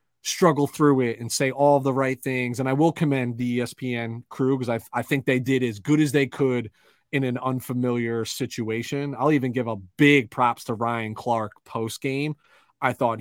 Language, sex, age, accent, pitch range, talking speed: English, male, 30-49, American, 125-155 Hz, 200 wpm